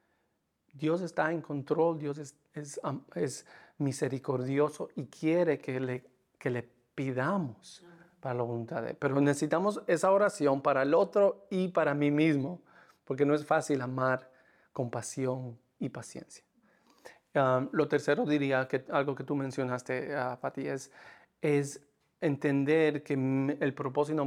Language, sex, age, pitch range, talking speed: Spanish, male, 40-59, 135-165 Hz, 145 wpm